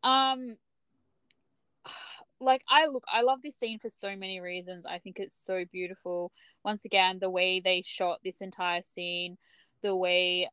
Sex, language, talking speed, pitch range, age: female, English, 160 wpm, 185-230 Hz, 10-29